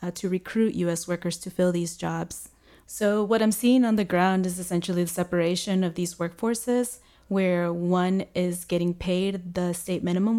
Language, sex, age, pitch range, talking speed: English, female, 20-39, 170-190 Hz, 175 wpm